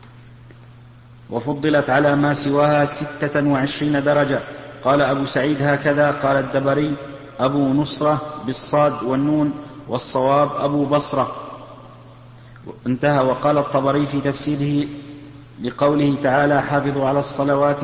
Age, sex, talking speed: 50-69, male, 100 wpm